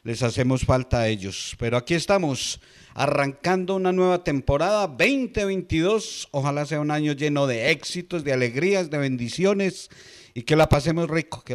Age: 40-59